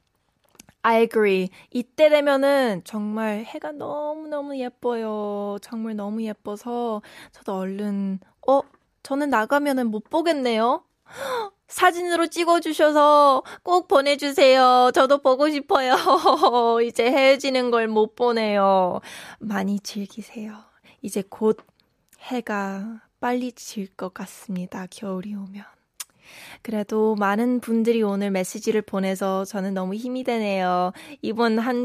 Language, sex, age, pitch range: Korean, female, 20-39, 205-260 Hz